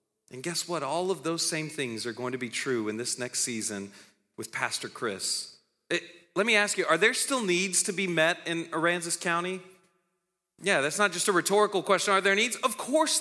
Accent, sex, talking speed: American, male, 210 wpm